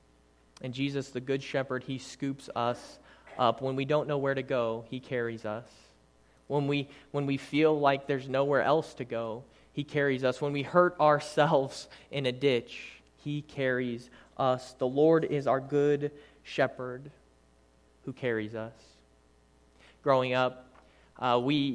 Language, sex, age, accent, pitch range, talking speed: English, male, 20-39, American, 120-145 Hz, 155 wpm